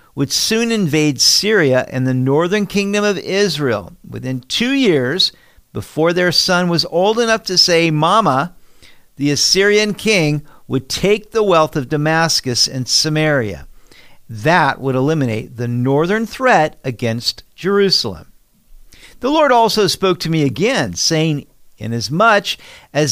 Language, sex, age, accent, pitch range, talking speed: English, male, 50-69, American, 130-180 Hz, 130 wpm